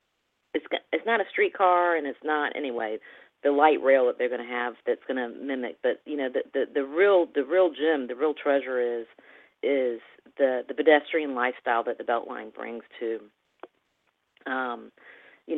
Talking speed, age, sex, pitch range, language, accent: 180 wpm, 40-59, female, 125-155 Hz, English, American